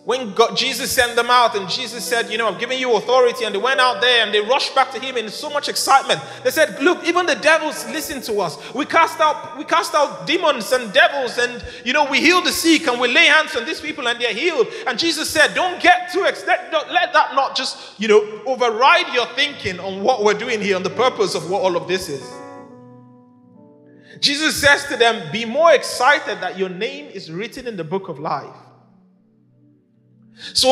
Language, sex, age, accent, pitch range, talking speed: English, male, 30-49, Nigerian, 220-310 Hz, 225 wpm